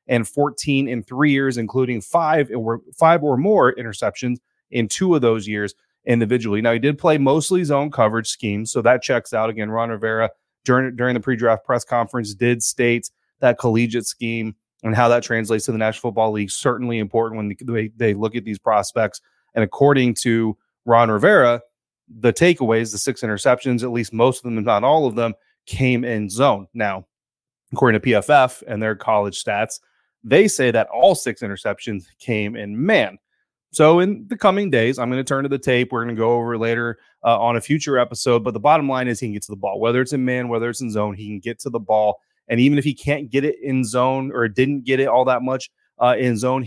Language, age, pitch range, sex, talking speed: English, 30-49, 115-130 Hz, male, 220 wpm